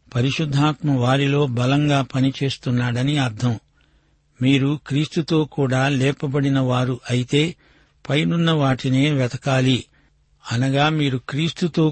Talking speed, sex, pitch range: 85 wpm, male, 130-150 Hz